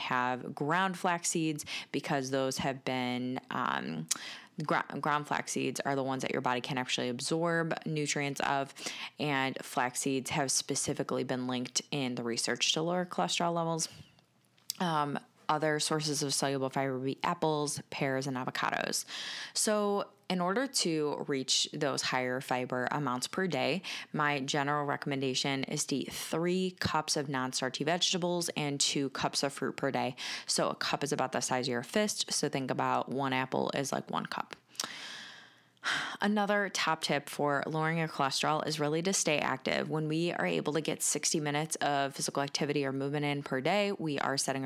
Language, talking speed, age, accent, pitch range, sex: English, 170 wpm, 10-29, American, 135-165 Hz, female